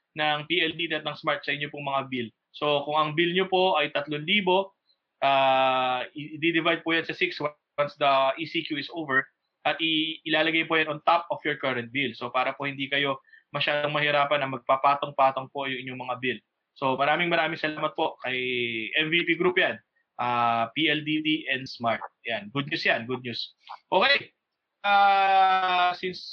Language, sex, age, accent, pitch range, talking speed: English, male, 20-39, Filipino, 135-170 Hz, 170 wpm